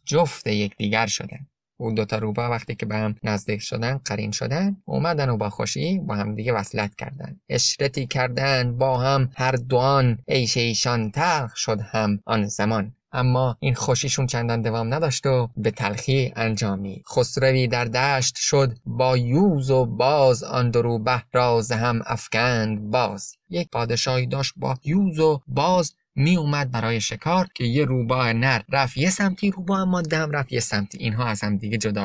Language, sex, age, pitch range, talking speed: Persian, male, 20-39, 110-135 Hz, 170 wpm